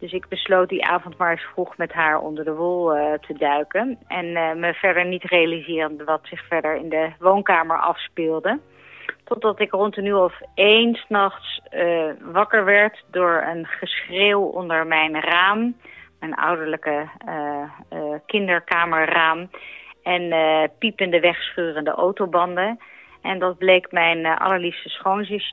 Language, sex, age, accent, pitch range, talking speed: Dutch, female, 30-49, Dutch, 170-210 Hz, 150 wpm